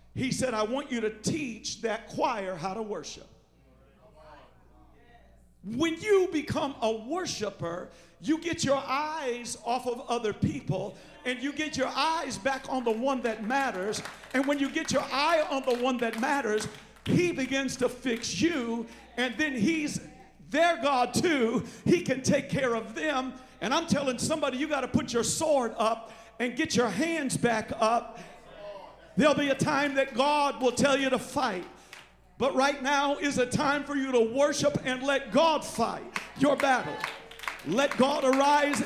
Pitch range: 235-290 Hz